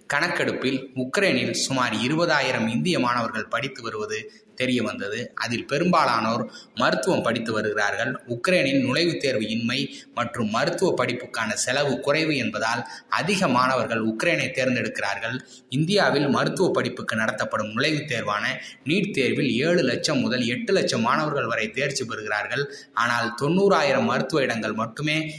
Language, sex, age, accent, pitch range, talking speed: Tamil, male, 20-39, native, 120-155 Hz, 110 wpm